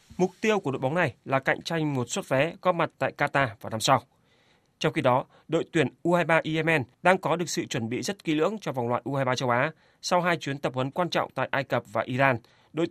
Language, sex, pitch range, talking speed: Vietnamese, male, 130-160 Hz, 250 wpm